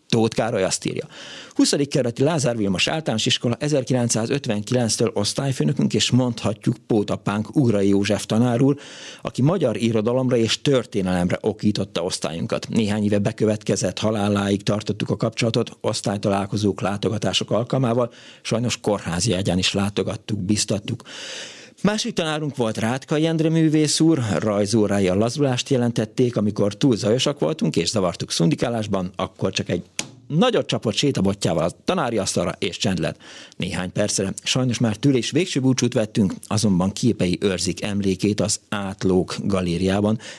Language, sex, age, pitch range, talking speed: Hungarian, male, 50-69, 100-125 Hz, 125 wpm